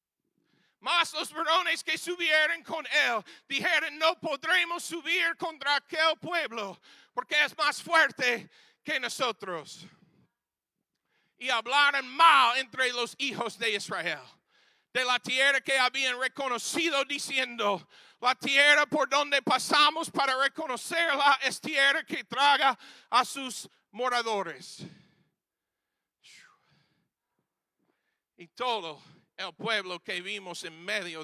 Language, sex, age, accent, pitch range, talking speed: English, male, 40-59, American, 195-295 Hz, 110 wpm